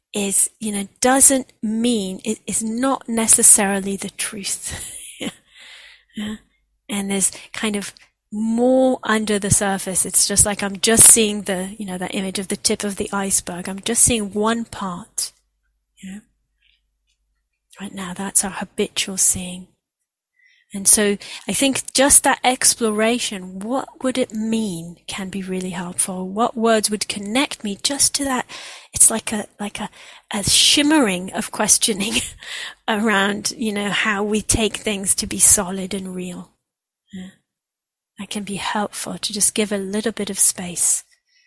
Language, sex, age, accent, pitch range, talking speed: English, female, 30-49, British, 190-225 Hz, 155 wpm